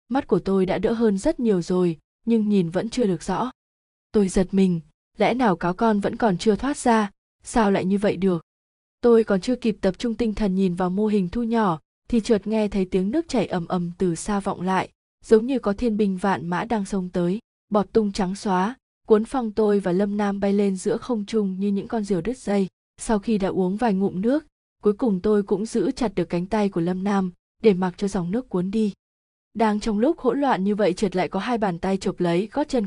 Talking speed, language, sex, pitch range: 245 wpm, Vietnamese, female, 185-230 Hz